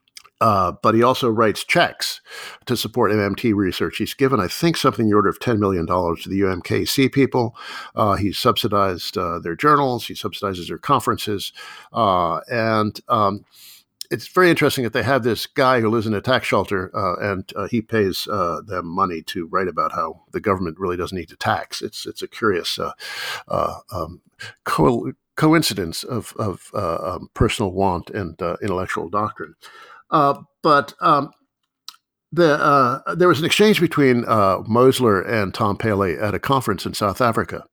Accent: American